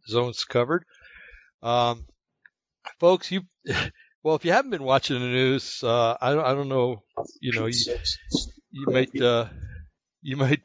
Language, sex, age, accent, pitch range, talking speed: English, male, 60-79, American, 115-140 Hz, 150 wpm